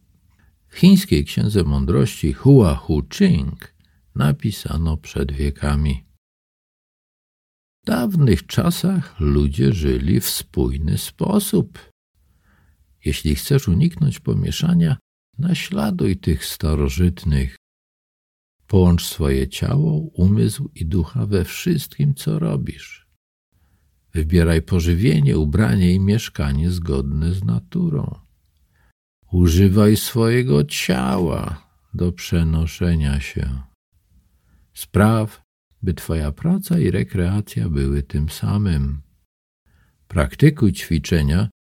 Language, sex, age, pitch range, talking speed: Polish, male, 50-69, 75-115 Hz, 85 wpm